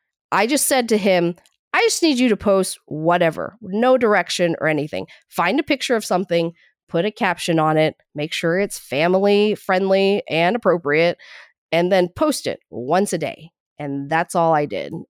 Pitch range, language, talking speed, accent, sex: 145-185 Hz, English, 180 wpm, American, female